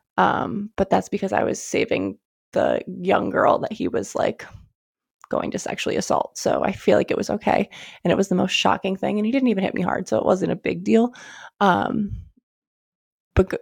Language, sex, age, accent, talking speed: English, female, 20-39, American, 205 wpm